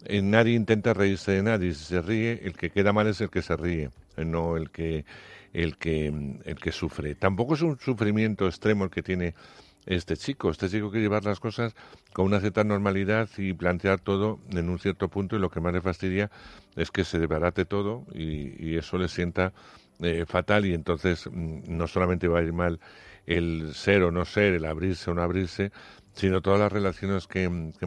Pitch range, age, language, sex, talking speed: 85-100 Hz, 60-79, Spanish, male, 205 wpm